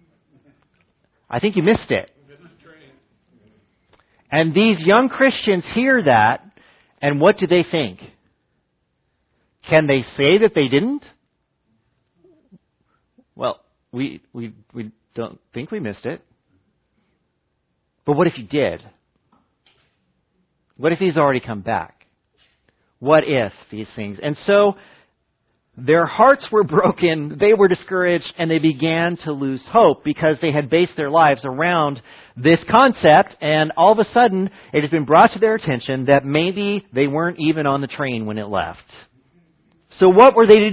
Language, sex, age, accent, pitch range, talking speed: English, male, 40-59, American, 145-210 Hz, 145 wpm